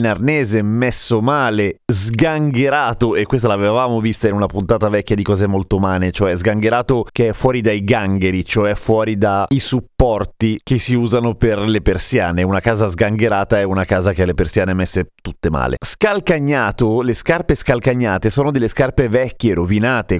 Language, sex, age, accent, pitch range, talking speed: Italian, male, 30-49, native, 110-150 Hz, 165 wpm